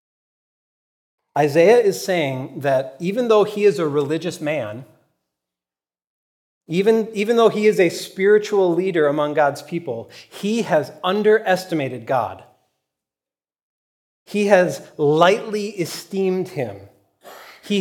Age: 40-59